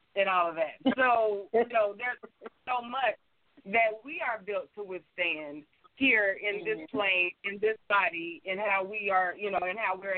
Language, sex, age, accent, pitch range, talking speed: English, female, 30-49, American, 175-215 Hz, 190 wpm